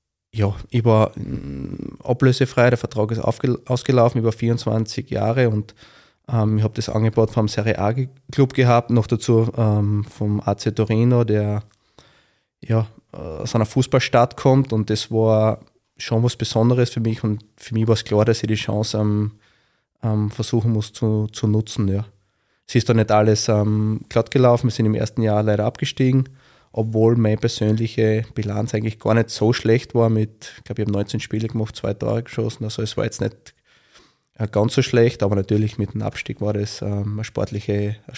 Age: 20-39